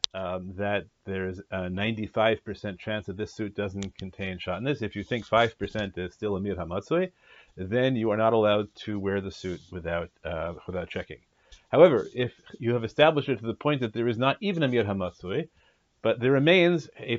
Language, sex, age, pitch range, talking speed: English, male, 40-59, 95-125 Hz, 205 wpm